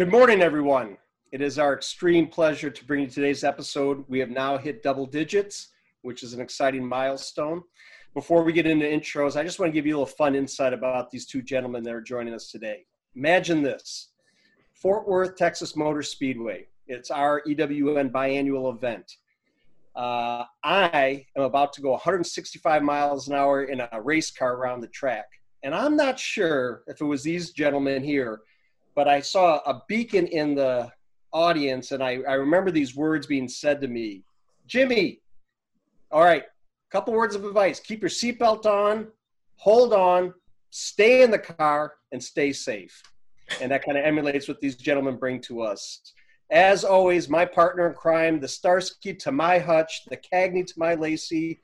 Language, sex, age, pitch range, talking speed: English, male, 40-59, 135-170 Hz, 175 wpm